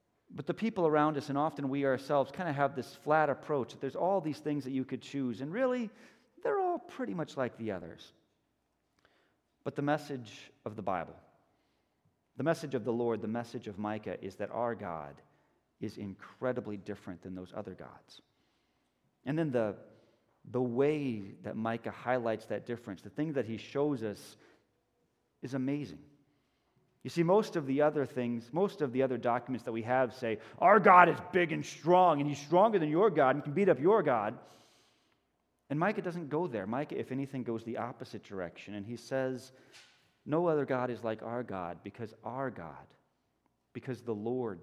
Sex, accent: male, American